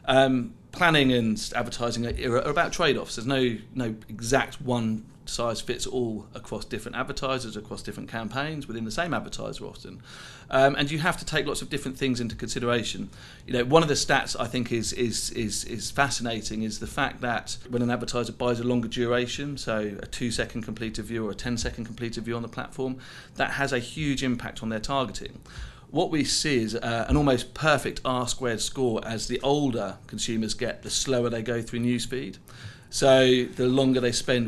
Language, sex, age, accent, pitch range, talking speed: English, male, 40-59, British, 115-135 Hz, 185 wpm